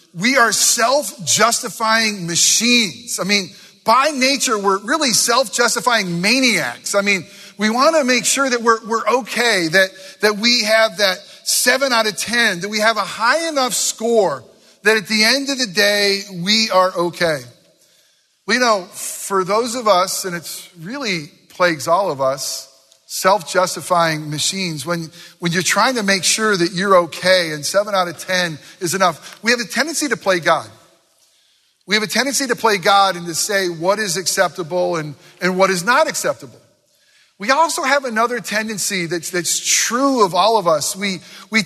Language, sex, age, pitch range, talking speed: English, male, 40-59, 180-235 Hz, 175 wpm